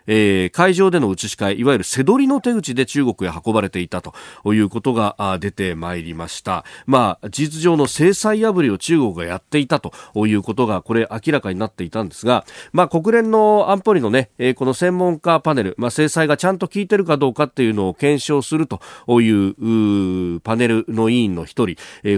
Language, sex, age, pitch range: Japanese, male, 40-59, 105-145 Hz